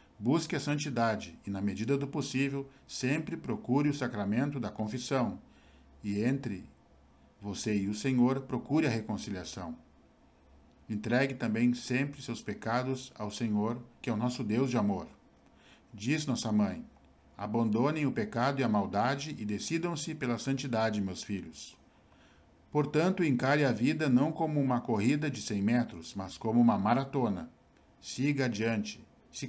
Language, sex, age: Portuguese, male, 50-69